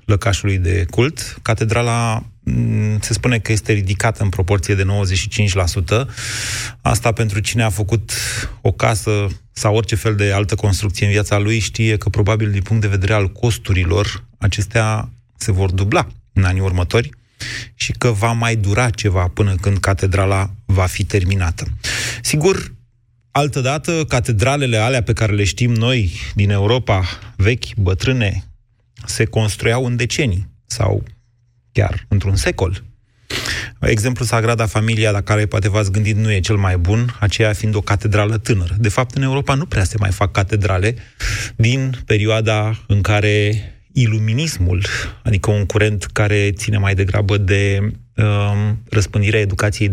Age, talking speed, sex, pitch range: 30-49, 150 wpm, male, 100-115 Hz